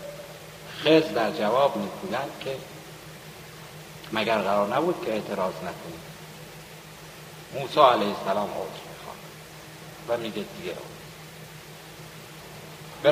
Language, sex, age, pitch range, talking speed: Persian, male, 60-79, 150-170 Hz, 90 wpm